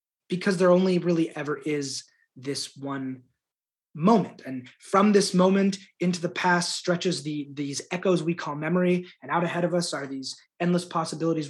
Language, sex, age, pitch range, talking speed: English, male, 20-39, 150-190 Hz, 165 wpm